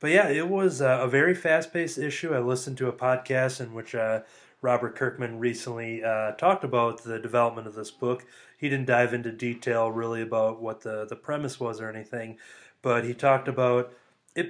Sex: male